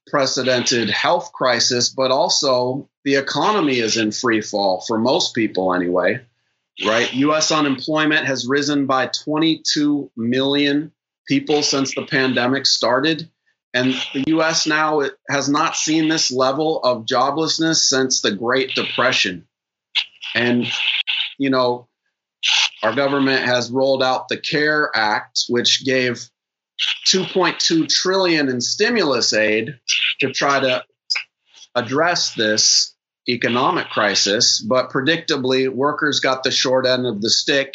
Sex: male